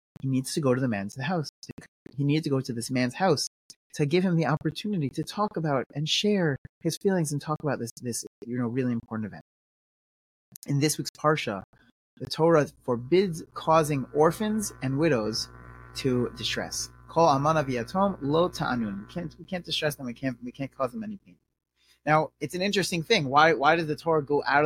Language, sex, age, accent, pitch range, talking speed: English, male, 30-49, American, 125-170 Hz, 195 wpm